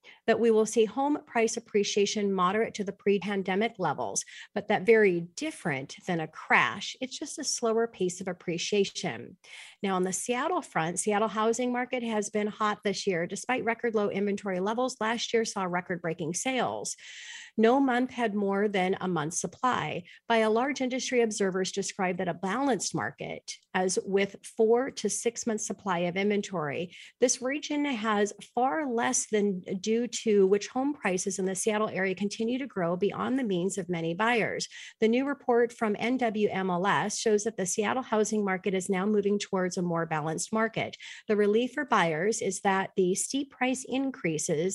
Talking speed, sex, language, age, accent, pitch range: 175 wpm, female, English, 40-59, American, 190-240 Hz